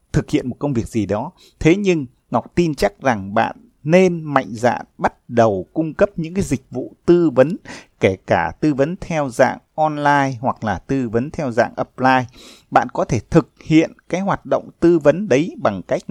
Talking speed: 200 wpm